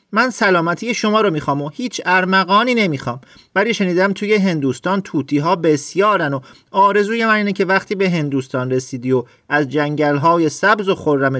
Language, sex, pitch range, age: Persian, male, 135-200 Hz, 40-59